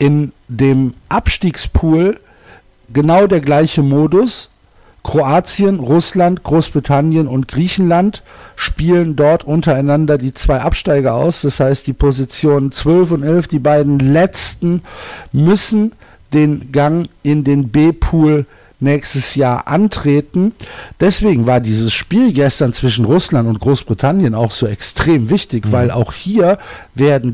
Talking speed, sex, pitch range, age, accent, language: 120 wpm, male, 125-160 Hz, 50-69, German, German